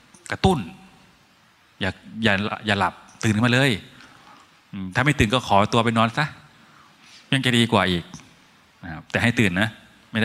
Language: Thai